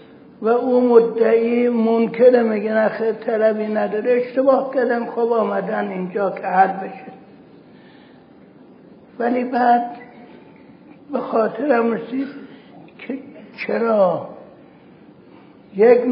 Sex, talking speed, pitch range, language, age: male, 90 wpm, 190-240 Hz, Persian, 60-79